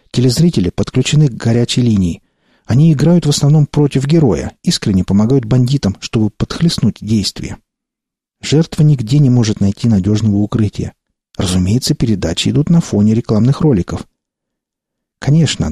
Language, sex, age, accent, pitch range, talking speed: Russian, male, 50-69, native, 105-145 Hz, 120 wpm